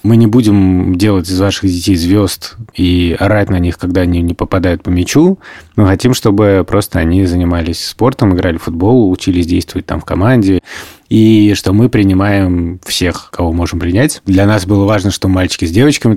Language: Russian